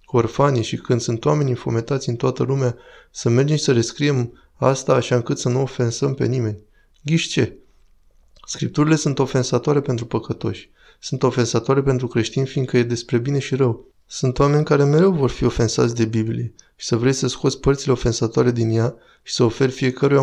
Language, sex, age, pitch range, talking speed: Romanian, male, 20-39, 115-135 Hz, 185 wpm